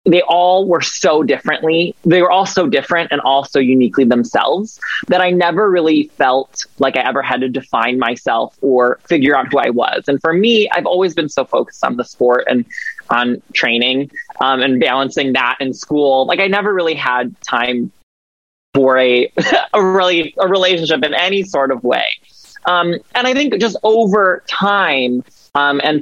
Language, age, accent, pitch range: English, 20-39, American, 135-190 Hz